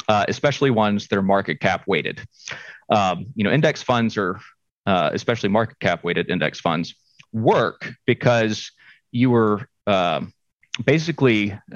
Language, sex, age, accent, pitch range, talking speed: Danish, male, 30-49, American, 100-120 Hz, 140 wpm